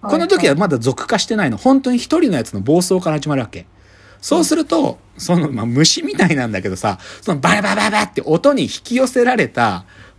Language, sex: Japanese, male